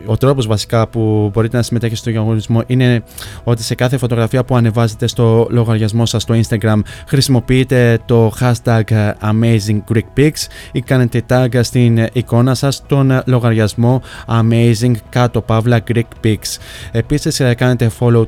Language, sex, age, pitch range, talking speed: Greek, male, 20-39, 115-125 Hz, 140 wpm